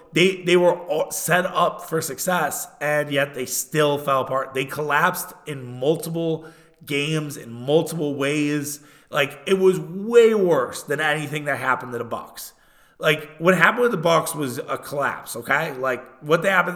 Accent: American